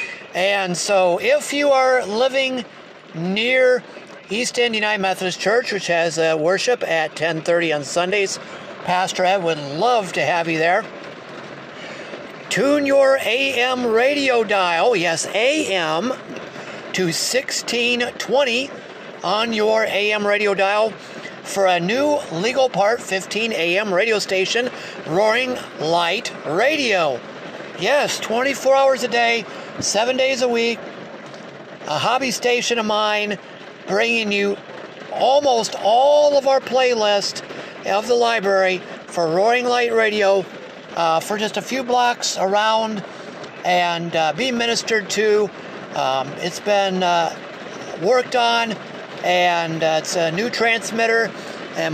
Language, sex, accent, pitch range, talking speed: English, male, American, 185-245 Hz, 125 wpm